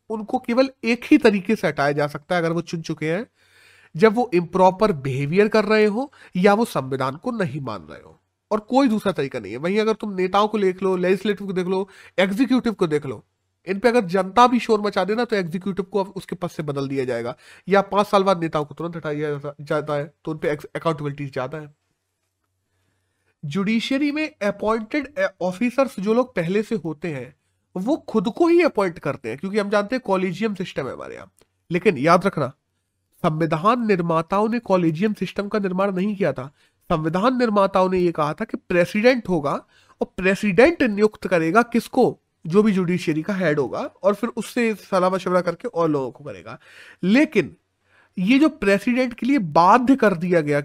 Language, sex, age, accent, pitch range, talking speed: Hindi, male, 30-49, native, 160-220 Hz, 165 wpm